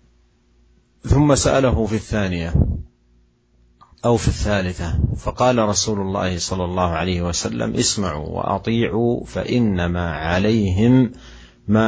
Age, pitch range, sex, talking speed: 50-69, 80-105 Hz, male, 95 wpm